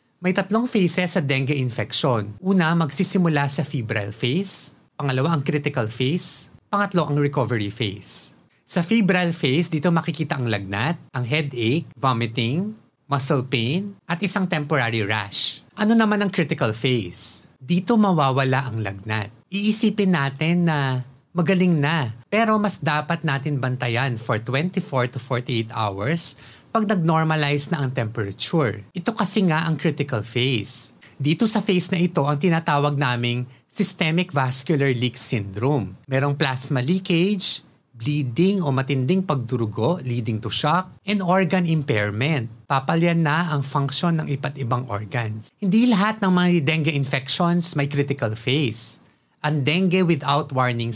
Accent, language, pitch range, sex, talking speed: native, Filipino, 125-175 Hz, male, 135 wpm